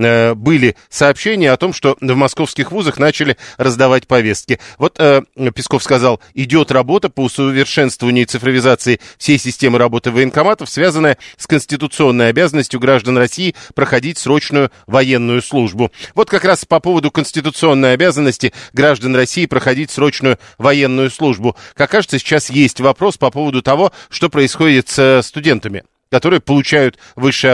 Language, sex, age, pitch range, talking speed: Russian, male, 40-59, 125-155 Hz, 135 wpm